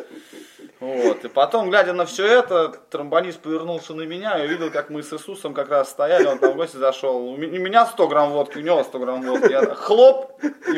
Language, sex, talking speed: Russian, male, 210 wpm